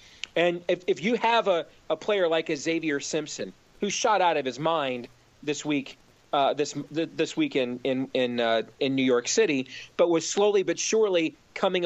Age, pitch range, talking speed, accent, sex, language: 40-59, 150-190 Hz, 195 wpm, American, male, English